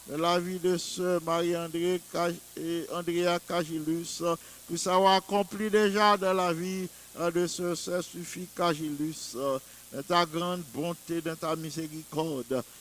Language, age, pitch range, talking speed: English, 50-69, 165-185 Hz, 110 wpm